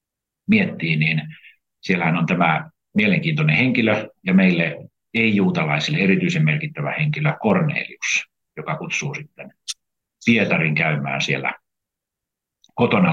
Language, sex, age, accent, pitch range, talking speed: Finnish, male, 50-69, native, 105-180 Hz, 95 wpm